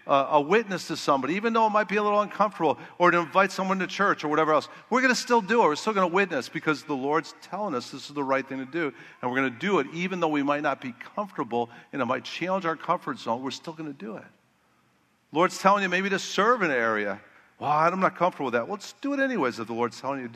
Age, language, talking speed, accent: 50-69, English, 285 wpm, American